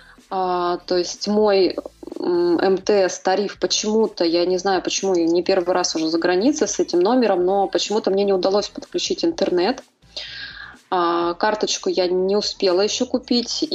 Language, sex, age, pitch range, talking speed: Russian, female, 20-39, 185-240 Hz, 150 wpm